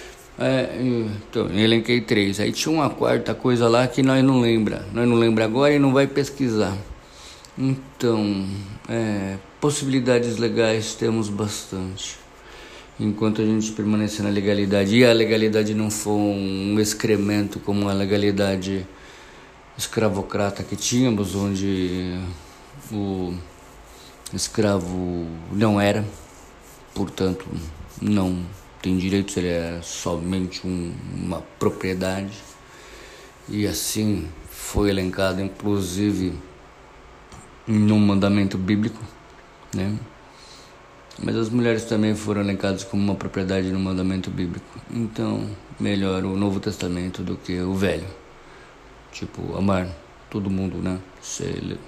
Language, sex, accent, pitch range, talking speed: Portuguese, male, Brazilian, 95-110 Hz, 115 wpm